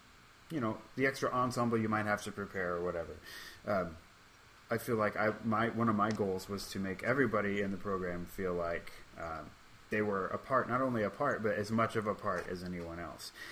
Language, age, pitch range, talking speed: English, 30-49, 90-110 Hz, 220 wpm